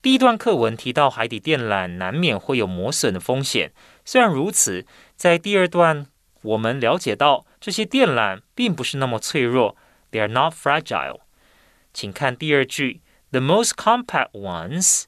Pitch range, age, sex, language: 120-175 Hz, 30-49, male, Chinese